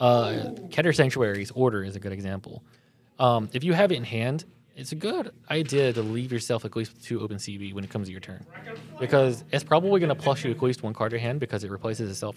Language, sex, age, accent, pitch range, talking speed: English, male, 20-39, American, 110-140 Hz, 245 wpm